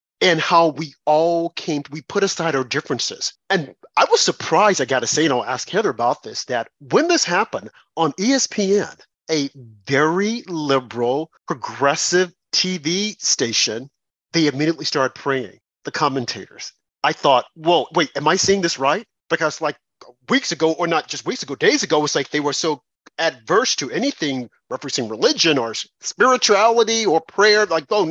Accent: American